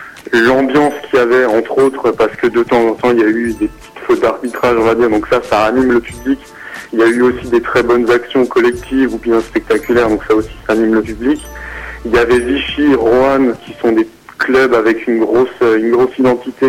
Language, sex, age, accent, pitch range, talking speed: French, male, 30-49, French, 110-130 Hz, 230 wpm